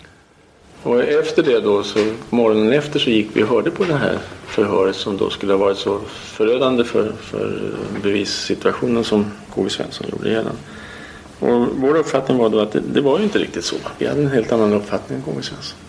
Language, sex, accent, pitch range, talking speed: Swedish, male, Norwegian, 95-115 Hz, 205 wpm